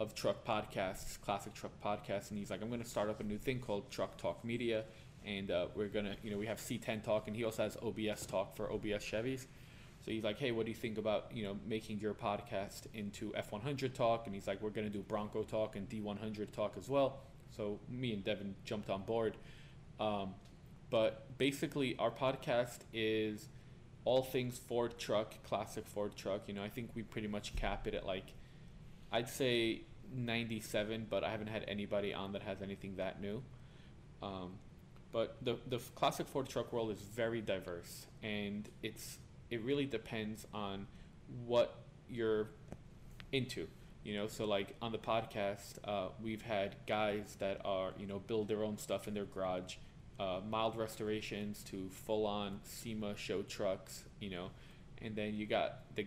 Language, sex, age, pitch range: English, male, 20-39, 105-120 Hz